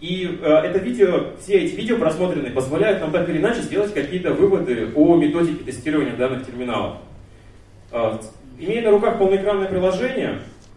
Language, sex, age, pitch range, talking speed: Russian, male, 30-49, 125-175 Hz, 140 wpm